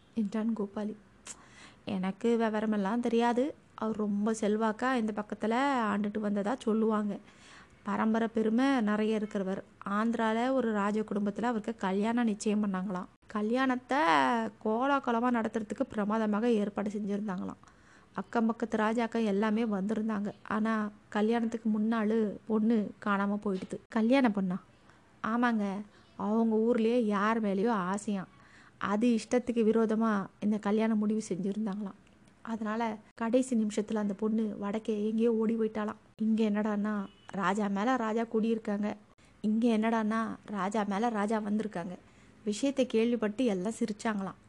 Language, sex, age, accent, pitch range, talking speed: Tamil, female, 20-39, native, 205-230 Hz, 110 wpm